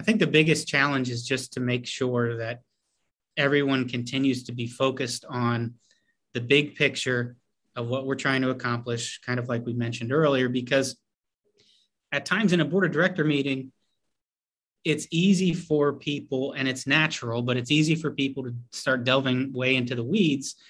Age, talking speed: 30-49, 175 wpm